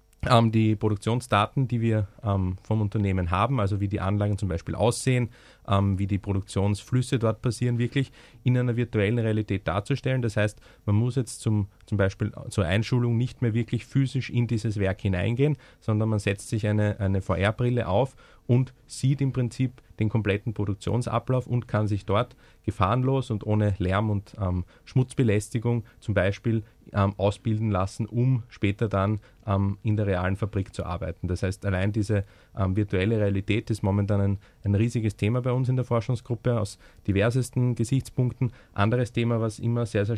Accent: Austrian